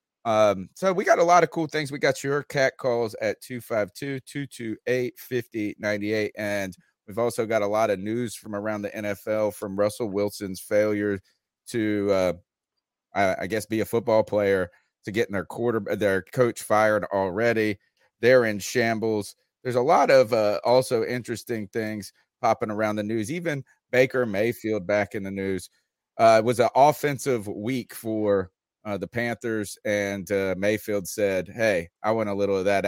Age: 30-49